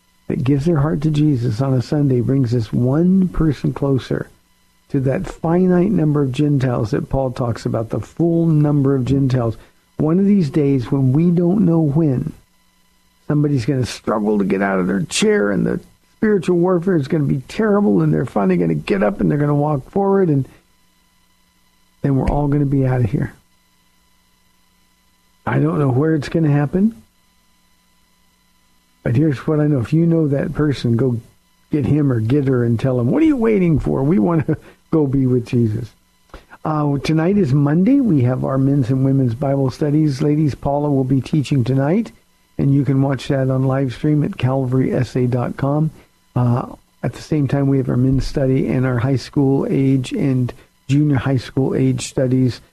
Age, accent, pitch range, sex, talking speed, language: 50-69, American, 125-155 Hz, male, 190 wpm, English